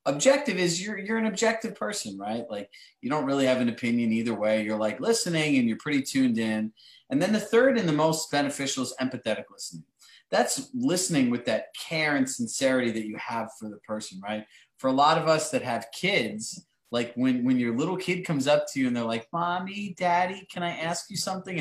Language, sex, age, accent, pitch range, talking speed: English, male, 30-49, American, 120-190 Hz, 215 wpm